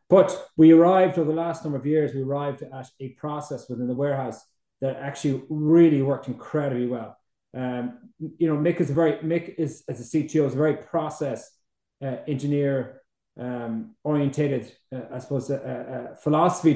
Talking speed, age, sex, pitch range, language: 175 wpm, 30-49, male, 130-160 Hz, English